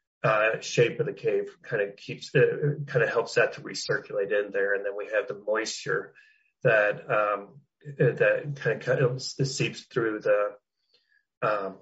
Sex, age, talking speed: male, 30-49, 175 wpm